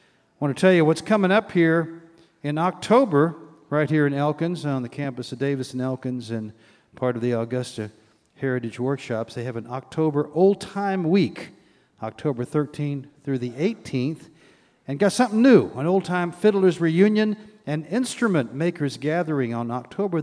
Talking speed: 160 wpm